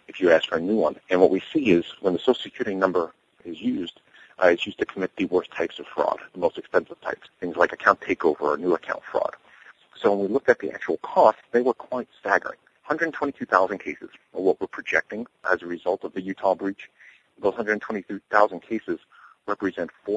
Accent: American